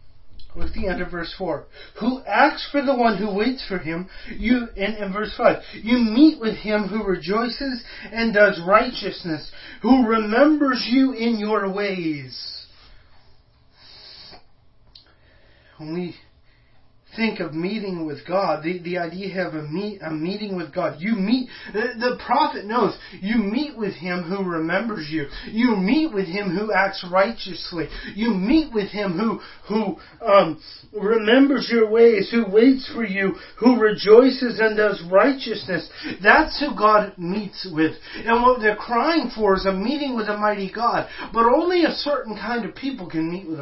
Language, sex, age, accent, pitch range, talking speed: English, male, 30-49, American, 170-230 Hz, 160 wpm